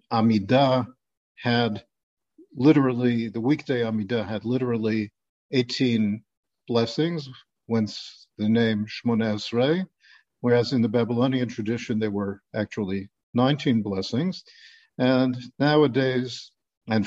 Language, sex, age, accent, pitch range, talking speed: English, male, 50-69, American, 110-130 Hz, 95 wpm